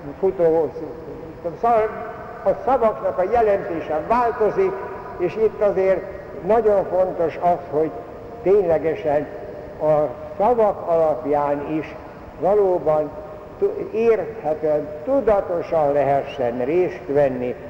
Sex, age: male, 60-79